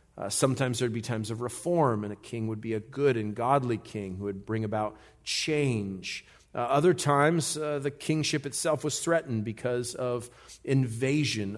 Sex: male